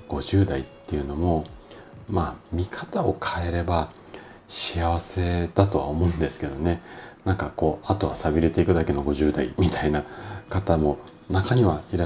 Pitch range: 75-100 Hz